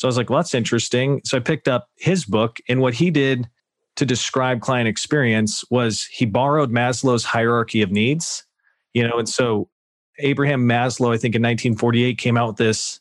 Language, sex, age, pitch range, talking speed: English, male, 40-59, 115-135 Hz, 195 wpm